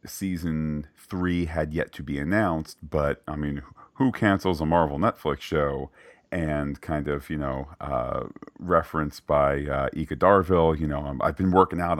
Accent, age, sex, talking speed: American, 40-59, male, 165 wpm